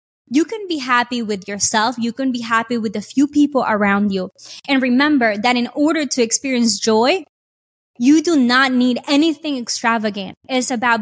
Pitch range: 225-275 Hz